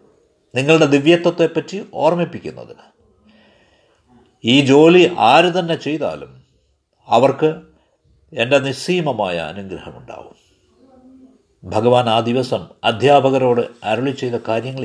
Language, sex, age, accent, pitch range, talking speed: Malayalam, male, 50-69, native, 115-160 Hz, 75 wpm